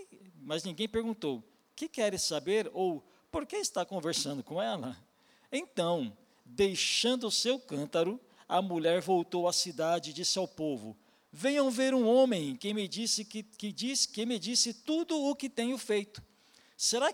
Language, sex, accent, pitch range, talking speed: Portuguese, male, Brazilian, 170-245 Hz, 145 wpm